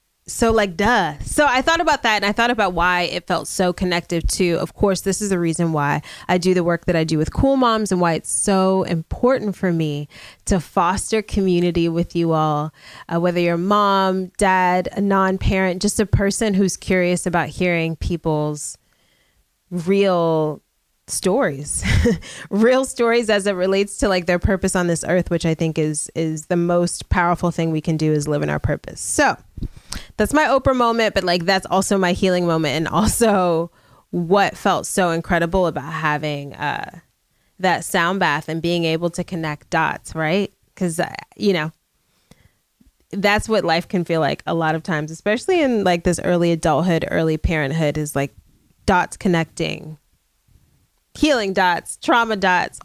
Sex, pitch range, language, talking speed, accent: female, 160-195 Hz, English, 175 wpm, American